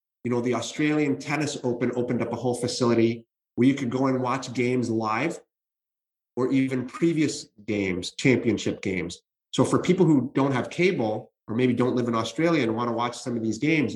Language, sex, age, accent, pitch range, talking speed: English, male, 30-49, American, 120-150 Hz, 200 wpm